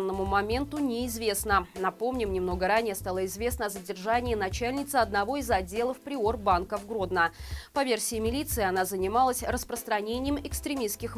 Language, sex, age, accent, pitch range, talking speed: Russian, female, 20-39, native, 200-270 Hz, 130 wpm